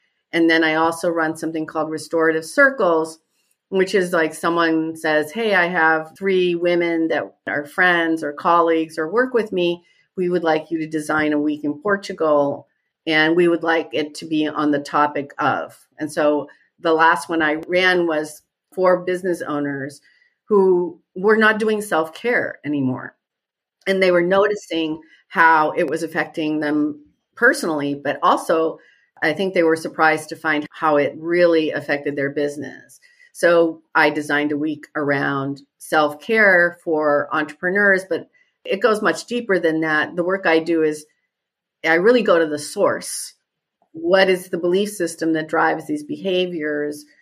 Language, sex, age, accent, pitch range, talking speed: English, female, 40-59, American, 150-180 Hz, 160 wpm